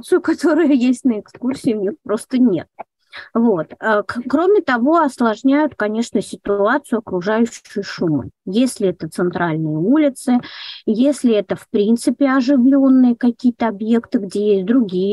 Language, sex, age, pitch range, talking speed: Russian, female, 20-39, 195-250 Hz, 120 wpm